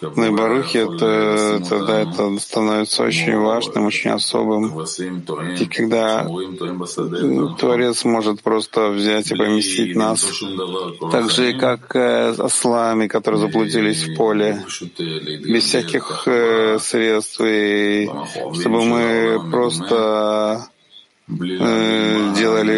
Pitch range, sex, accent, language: 100-115 Hz, male, native, Russian